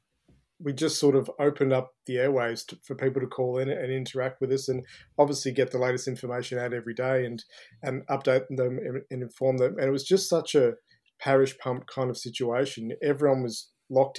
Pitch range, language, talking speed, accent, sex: 125-135 Hz, English, 205 wpm, Australian, male